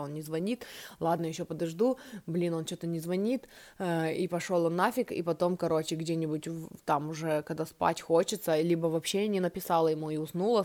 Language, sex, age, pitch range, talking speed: Russian, female, 20-39, 165-220 Hz, 180 wpm